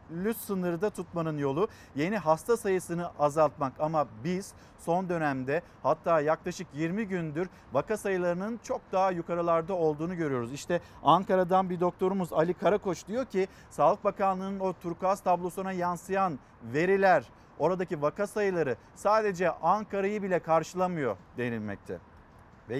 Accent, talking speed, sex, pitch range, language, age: native, 125 wpm, male, 160-195 Hz, Turkish, 50-69